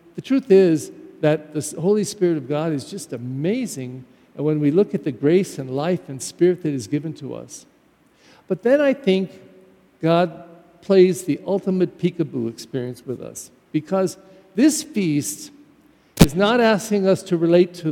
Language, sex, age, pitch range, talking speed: English, male, 50-69, 150-190 Hz, 165 wpm